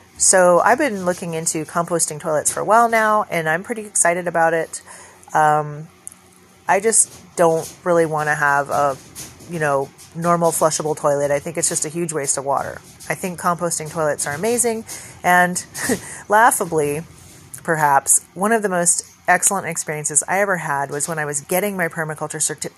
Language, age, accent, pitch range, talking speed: English, 30-49, American, 155-205 Hz, 175 wpm